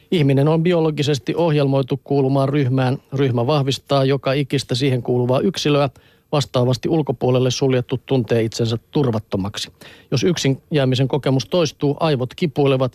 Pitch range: 125-150 Hz